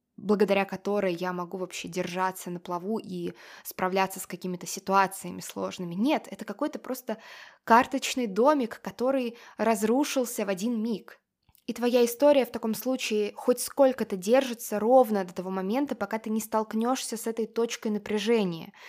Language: Russian